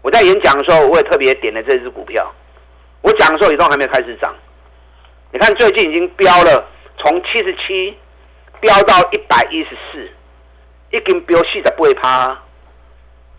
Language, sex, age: Chinese, male, 50-69